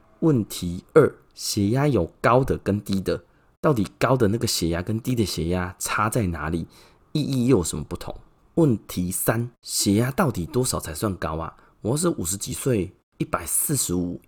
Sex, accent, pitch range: male, native, 90-130 Hz